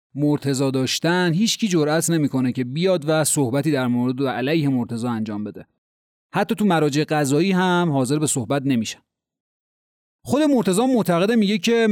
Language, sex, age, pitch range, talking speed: Persian, male, 30-49, 135-185 Hz, 150 wpm